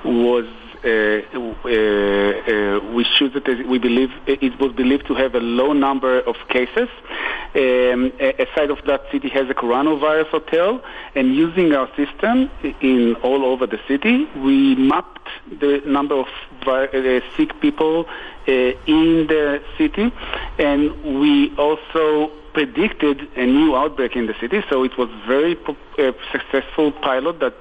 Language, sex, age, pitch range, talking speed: English, male, 50-69, 130-160 Hz, 150 wpm